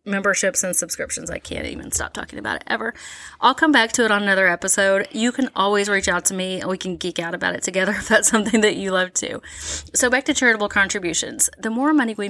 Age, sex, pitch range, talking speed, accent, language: 30-49, female, 190-250 Hz, 245 wpm, American, English